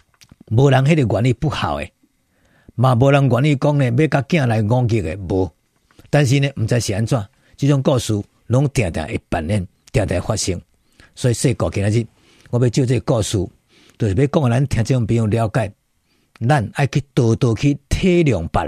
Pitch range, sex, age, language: 105-140 Hz, male, 50-69, Chinese